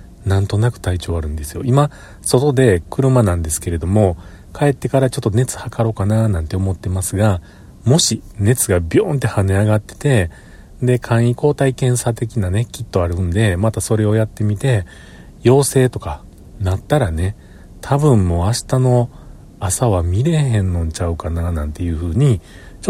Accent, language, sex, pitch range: native, Japanese, male, 90-125 Hz